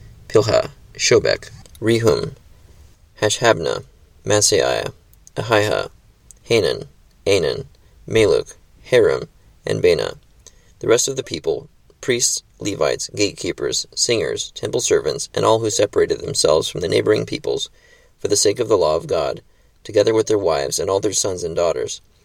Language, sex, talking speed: English, male, 135 wpm